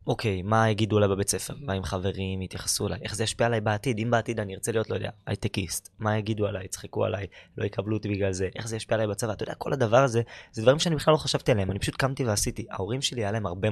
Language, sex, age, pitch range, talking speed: Hebrew, male, 20-39, 100-120 Hz, 265 wpm